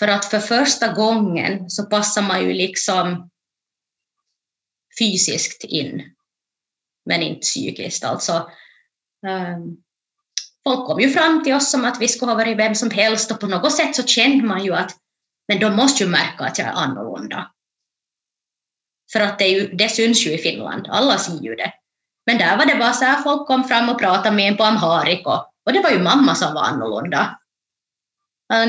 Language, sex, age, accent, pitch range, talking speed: Finnish, female, 20-39, native, 180-235 Hz, 185 wpm